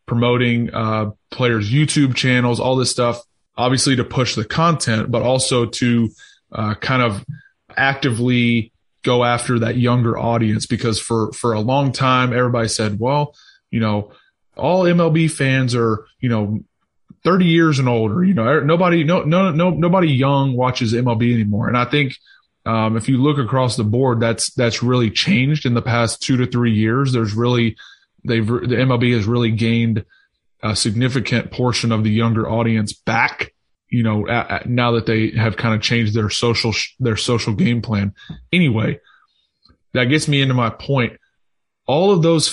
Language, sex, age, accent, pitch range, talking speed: English, male, 20-39, American, 115-130 Hz, 170 wpm